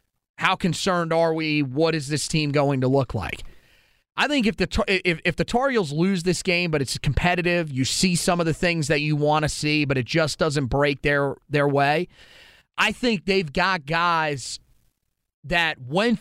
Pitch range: 145-185 Hz